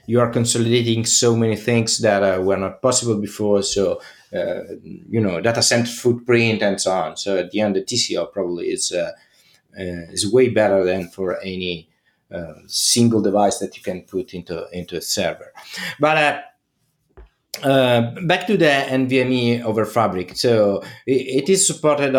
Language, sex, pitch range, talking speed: English, male, 110-135 Hz, 170 wpm